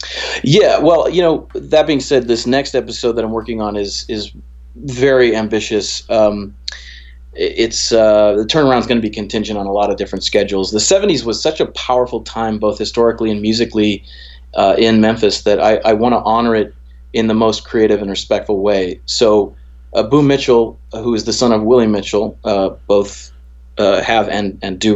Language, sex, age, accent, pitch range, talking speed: English, male, 30-49, American, 100-115 Hz, 190 wpm